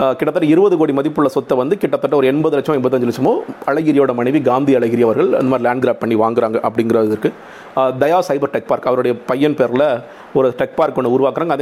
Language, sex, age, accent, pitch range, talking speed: Tamil, male, 40-59, native, 125-150 Hz, 185 wpm